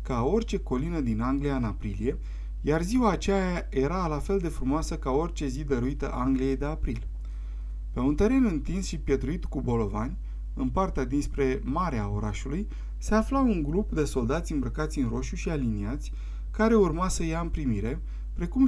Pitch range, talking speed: 120-170 Hz, 170 wpm